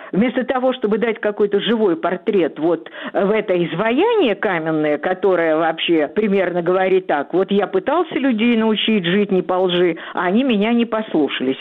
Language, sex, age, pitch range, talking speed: Russian, female, 50-69, 180-245 Hz, 160 wpm